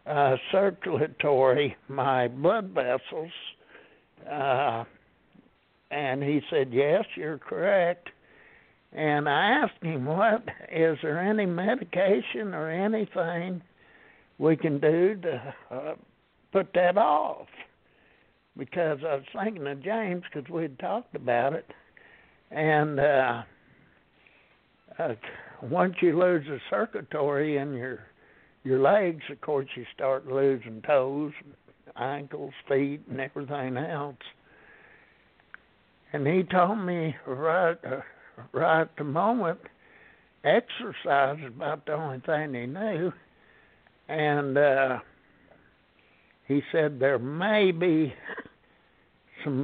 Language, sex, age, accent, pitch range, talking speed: English, male, 60-79, American, 135-175 Hz, 110 wpm